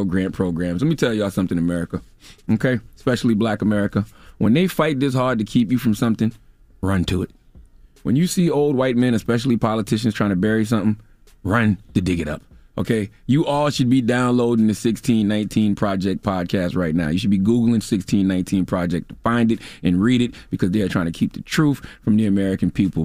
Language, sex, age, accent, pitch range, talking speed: English, male, 30-49, American, 95-130 Hz, 205 wpm